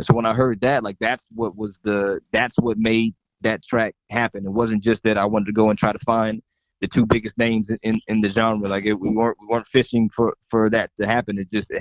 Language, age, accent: English, 20-39, American